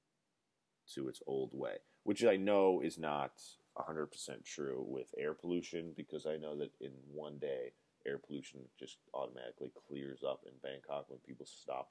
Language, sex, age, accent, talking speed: English, male, 30-49, American, 165 wpm